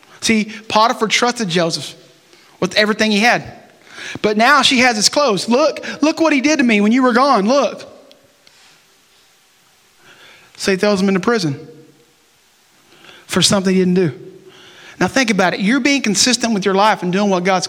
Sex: male